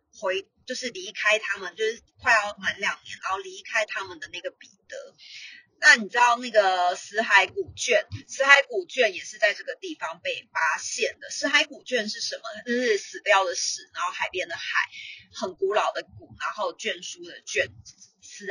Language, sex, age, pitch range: Chinese, female, 30-49, 210-330 Hz